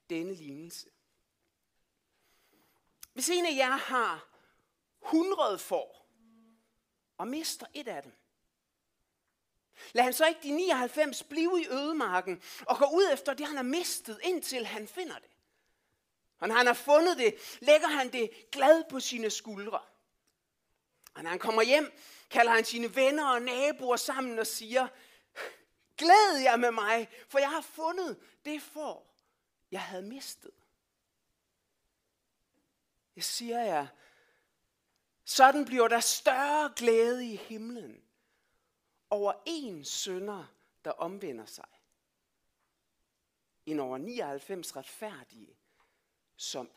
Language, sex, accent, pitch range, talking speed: Danish, male, native, 220-300 Hz, 125 wpm